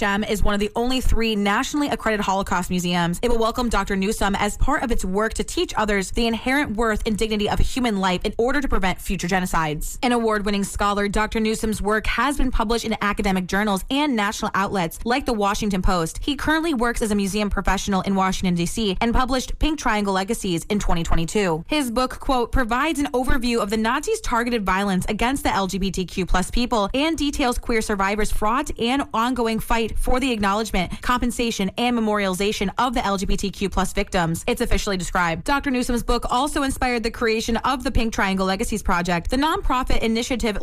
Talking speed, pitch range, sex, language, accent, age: 190 wpm, 200-250 Hz, female, English, American, 20-39